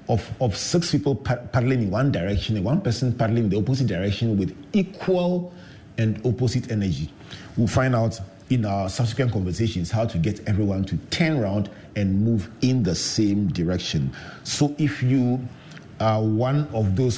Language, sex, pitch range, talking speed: English, male, 100-130 Hz, 170 wpm